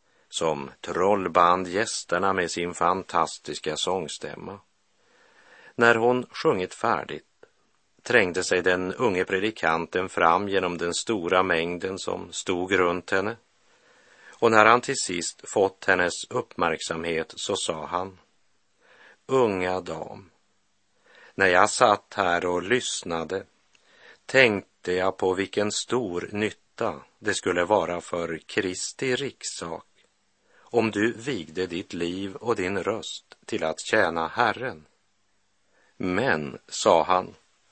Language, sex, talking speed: Swedish, male, 115 wpm